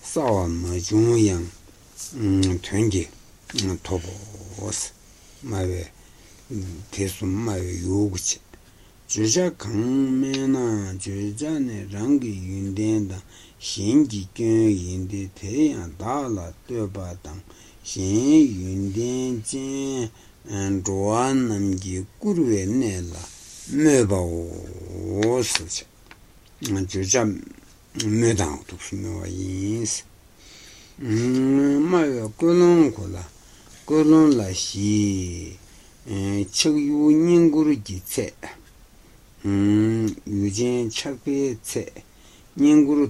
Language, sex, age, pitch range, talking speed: Italian, male, 60-79, 95-125 Hz, 30 wpm